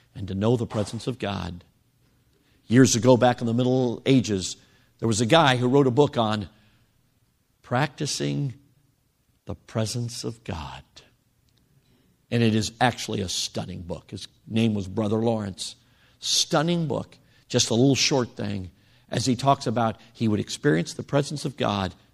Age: 50-69